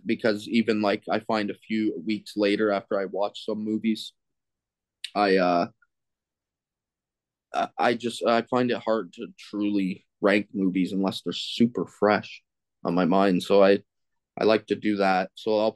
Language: English